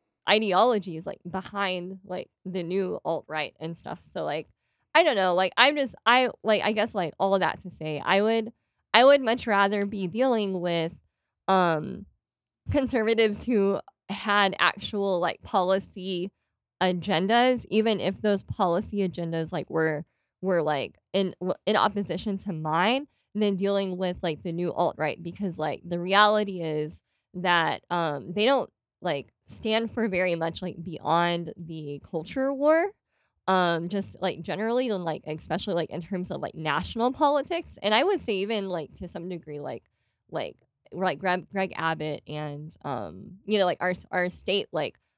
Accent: American